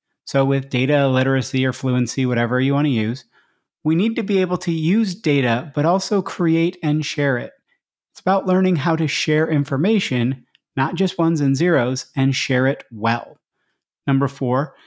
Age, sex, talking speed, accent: 30-49, male, 175 wpm, American